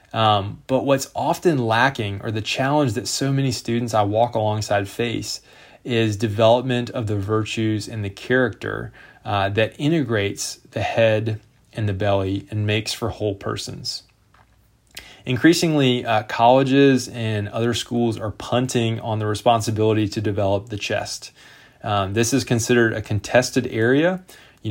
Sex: male